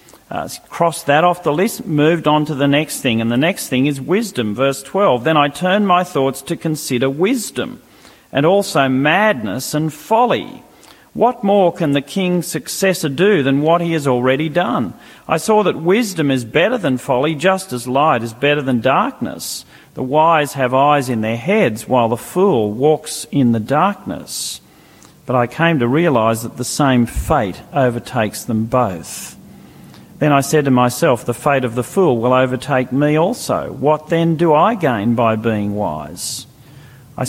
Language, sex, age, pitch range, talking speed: English, male, 40-59, 125-165 Hz, 175 wpm